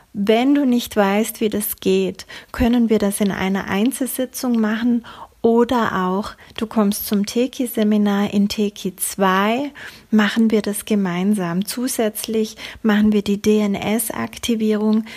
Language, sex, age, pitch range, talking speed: German, female, 30-49, 200-230 Hz, 125 wpm